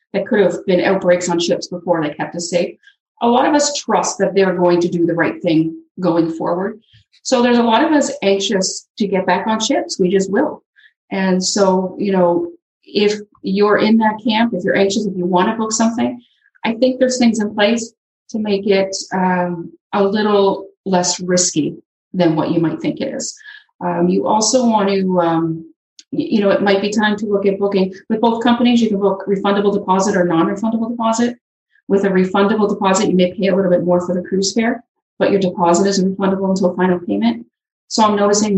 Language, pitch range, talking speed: English, 180-230 Hz, 210 wpm